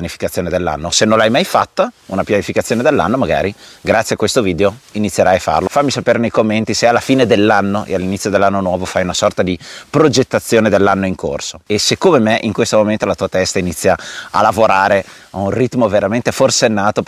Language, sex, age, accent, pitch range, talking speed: Italian, male, 30-49, native, 95-115 Hz, 195 wpm